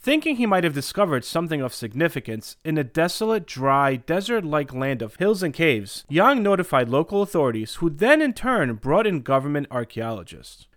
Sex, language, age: male, English, 30-49